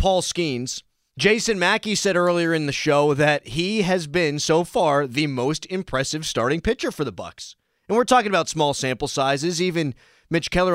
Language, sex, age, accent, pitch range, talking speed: English, male, 30-49, American, 115-190 Hz, 185 wpm